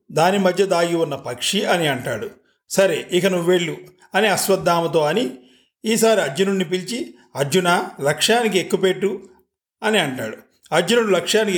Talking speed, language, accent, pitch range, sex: 125 wpm, Telugu, native, 150-195 Hz, male